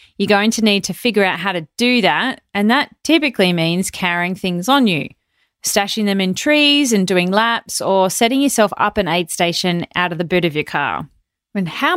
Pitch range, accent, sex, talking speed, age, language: 185-250 Hz, Australian, female, 210 wpm, 30-49, English